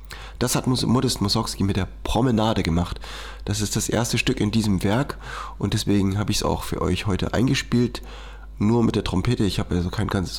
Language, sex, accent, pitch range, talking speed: German, male, German, 90-110 Hz, 200 wpm